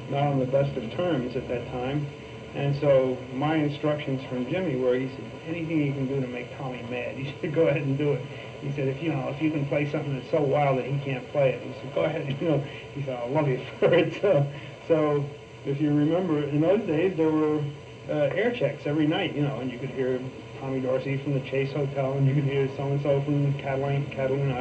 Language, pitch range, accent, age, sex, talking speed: English, 130-150 Hz, American, 50-69, male, 240 wpm